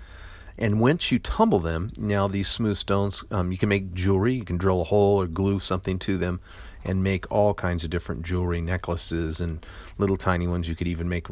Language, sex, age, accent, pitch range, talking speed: English, male, 40-59, American, 90-100 Hz, 210 wpm